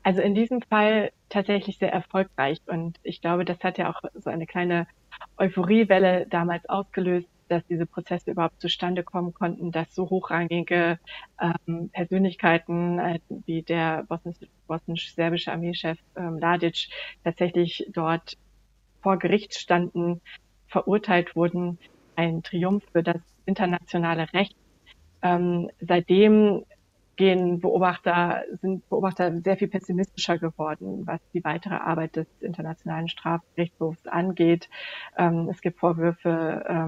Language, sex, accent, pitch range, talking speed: German, female, German, 165-180 Hz, 115 wpm